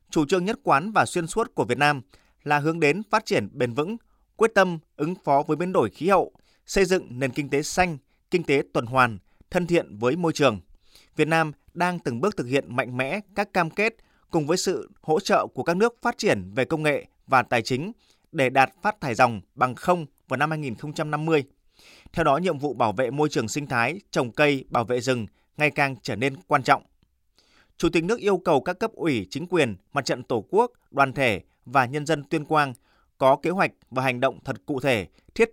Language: Vietnamese